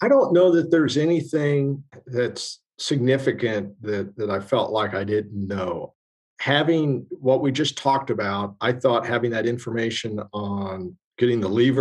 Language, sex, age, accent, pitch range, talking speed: English, male, 50-69, American, 95-120 Hz, 160 wpm